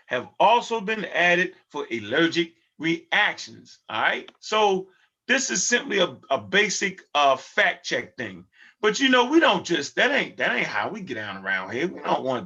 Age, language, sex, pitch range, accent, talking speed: 30-49, English, male, 165-205 Hz, American, 190 wpm